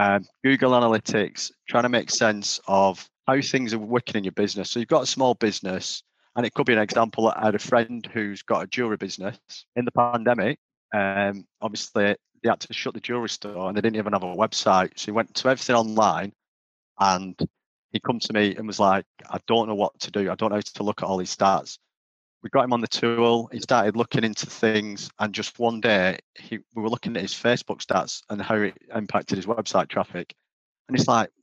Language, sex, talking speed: English, male, 225 wpm